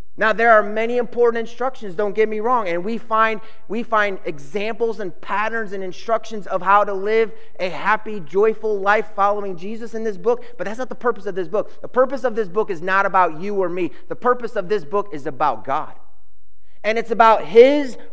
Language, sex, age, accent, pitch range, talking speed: English, male, 30-49, American, 195-240 Hz, 210 wpm